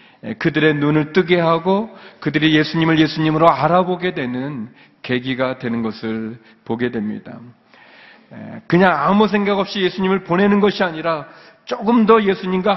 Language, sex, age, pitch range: Korean, male, 40-59, 150-230 Hz